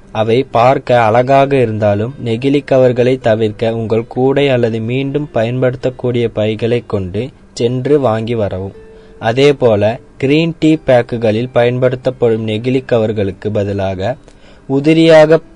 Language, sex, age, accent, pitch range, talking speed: Tamil, male, 20-39, native, 115-140 Hz, 95 wpm